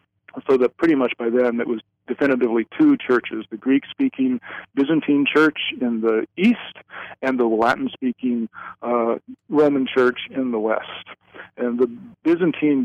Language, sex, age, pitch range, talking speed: English, male, 50-69, 115-140 Hz, 140 wpm